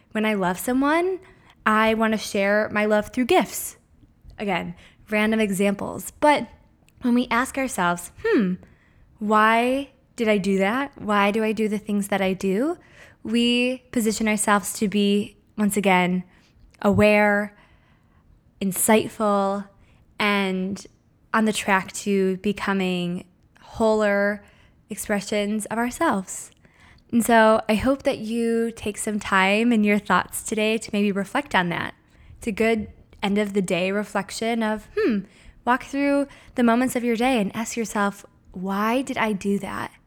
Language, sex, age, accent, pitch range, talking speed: English, female, 20-39, American, 195-230 Hz, 140 wpm